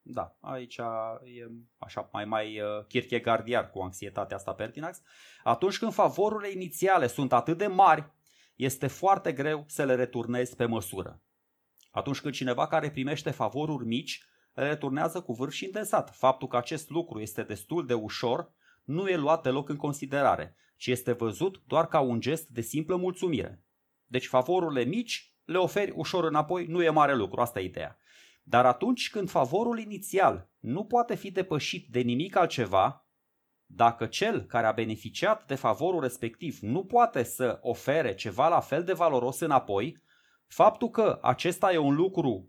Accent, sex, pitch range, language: native, male, 120-170 Hz, Romanian